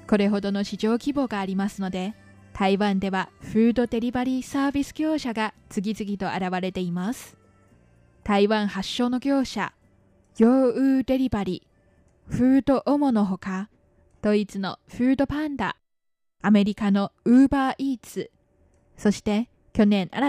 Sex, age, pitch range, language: female, 20-39, 200-250 Hz, Japanese